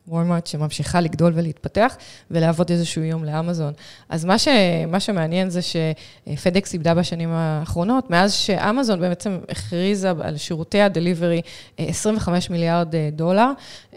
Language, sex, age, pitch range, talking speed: Hebrew, female, 20-39, 165-190 Hz, 120 wpm